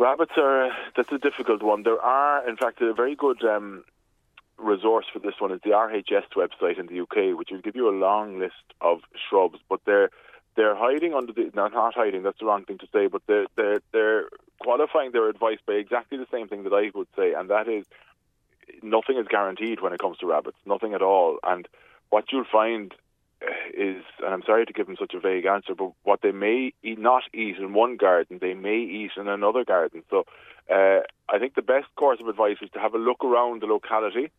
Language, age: English, 30-49